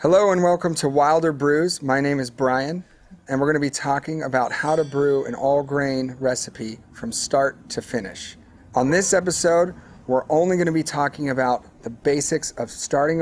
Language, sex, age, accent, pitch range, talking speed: English, male, 40-59, American, 125-150 Hz, 185 wpm